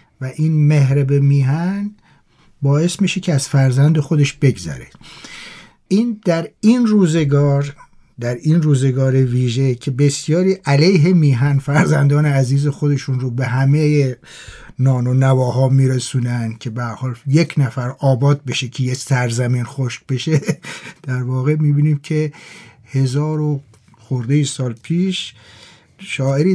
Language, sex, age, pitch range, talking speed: Persian, male, 50-69, 130-155 Hz, 125 wpm